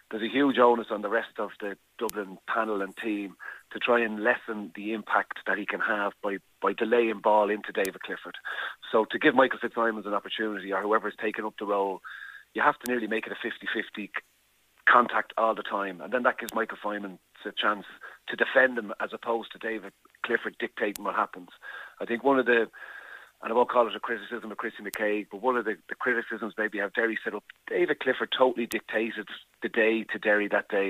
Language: English